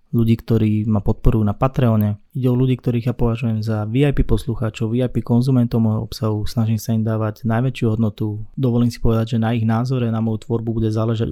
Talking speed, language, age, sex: 195 wpm, Slovak, 20-39, male